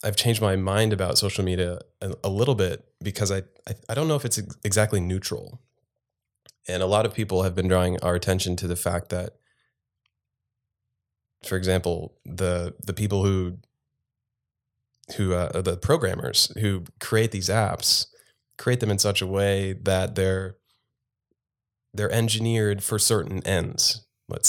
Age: 20-39